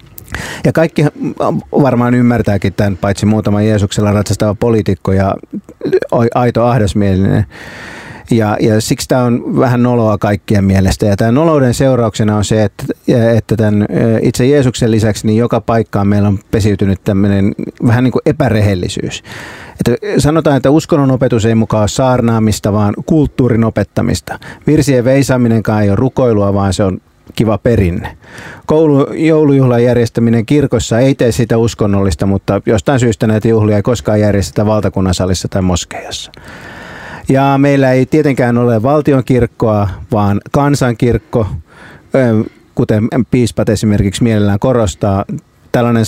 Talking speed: 130 wpm